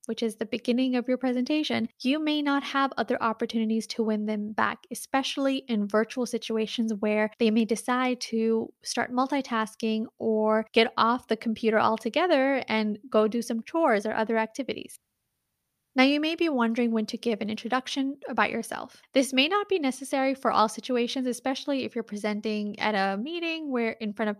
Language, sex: English, female